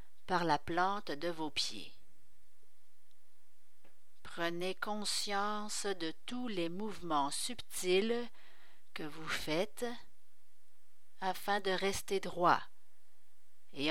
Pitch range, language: 155-210 Hz, French